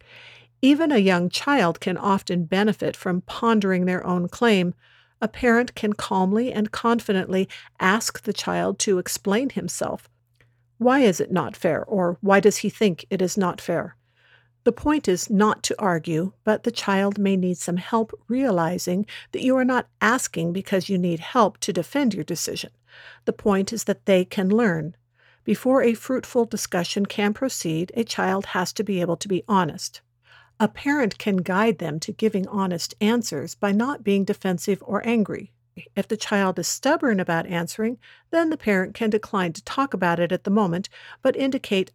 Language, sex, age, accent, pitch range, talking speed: English, female, 50-69, American, 175-220 Hz, 175 wpm